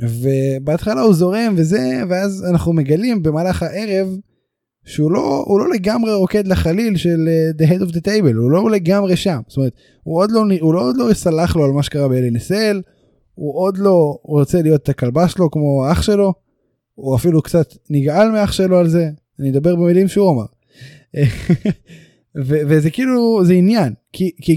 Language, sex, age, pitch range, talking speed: Hebrew, male, 20-39, 140-190 Hz, 175 wpm